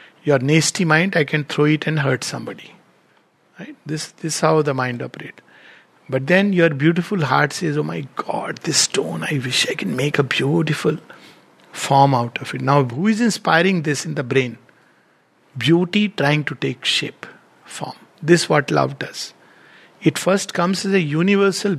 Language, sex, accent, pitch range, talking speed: English, male, Indian, 145-185 Hz, 180 wpm